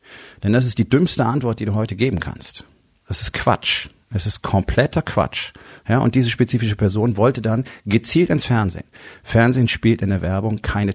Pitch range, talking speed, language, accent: 100-125 Hz, 185 wpm, German, German